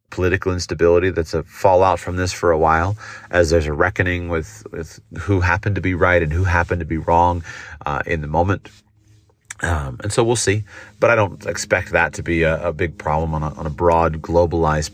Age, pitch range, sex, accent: 30-49, 85-100 Hz, male, American